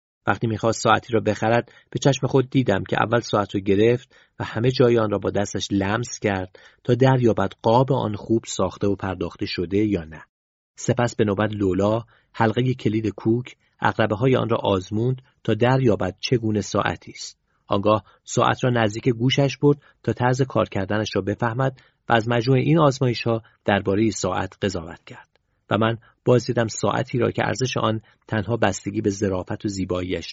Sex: male